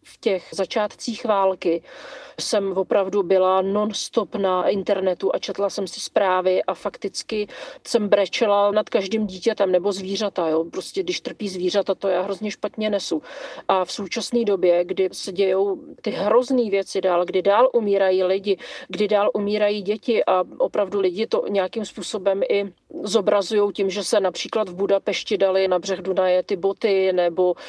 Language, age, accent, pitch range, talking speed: Czech, 40-59, native, 190-215 Hz, 160 wpm